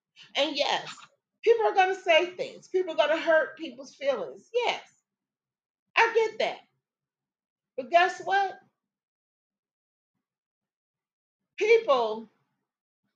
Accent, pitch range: American, 190-315 Hz